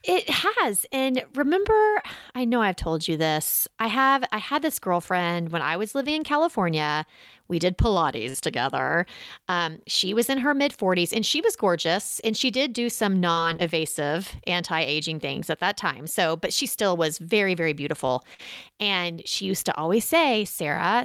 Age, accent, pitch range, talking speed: 30-49, American, 180-250 Hz, 175 wpm